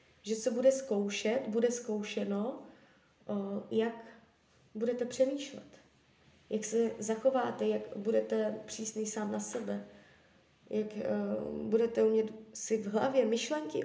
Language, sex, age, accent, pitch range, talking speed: Czech, female, 20-39, native, 210-260 Hz, 110 wpm